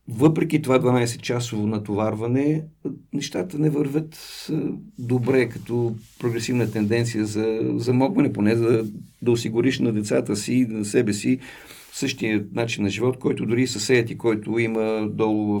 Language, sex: Bulgarian, male